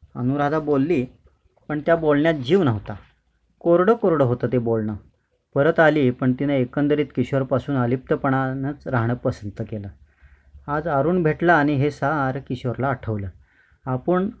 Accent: native